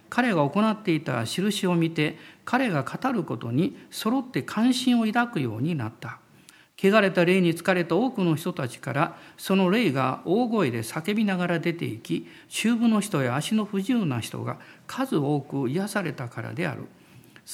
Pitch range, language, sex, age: 140-210 Hz, Japanese, male, 50-69